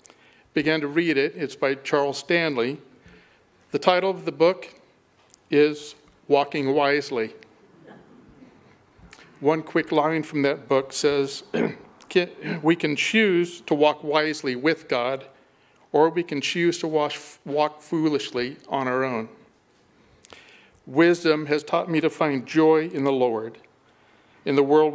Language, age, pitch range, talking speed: English, 50-69, 140-160 Hz, 130 wpm